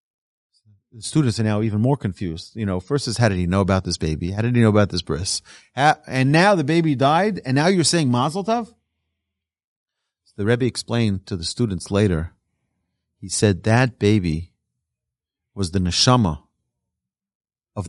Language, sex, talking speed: English, male, 170 wpm